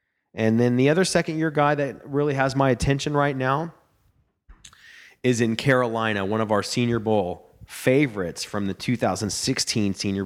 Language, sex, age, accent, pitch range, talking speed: English, male, 30-49, American, 105-135 Hz, 160 wpm